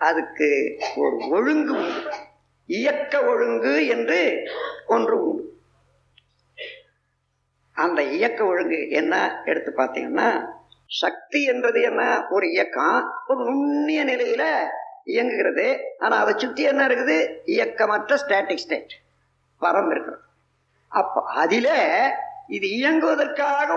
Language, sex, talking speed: Tamil, female, 75 wpm